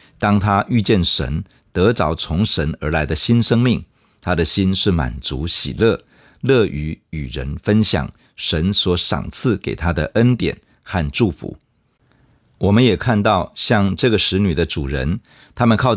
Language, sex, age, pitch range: Chinese, male, 50-69, 80-115 Hz